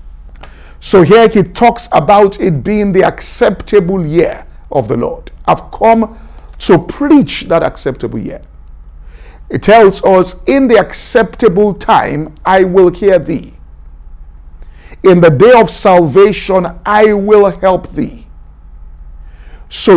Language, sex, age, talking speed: English, male, 50-69, 125 wpm